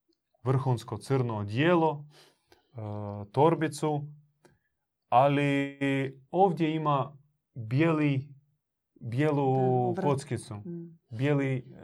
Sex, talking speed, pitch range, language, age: male, 50 wpm, 120-155 Hz, Croatian, 30-49